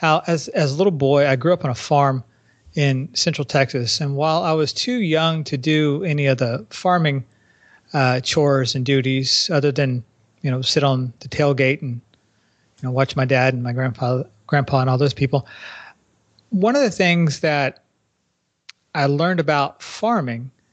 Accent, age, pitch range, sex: American, 40-59, 130-160 Hz, male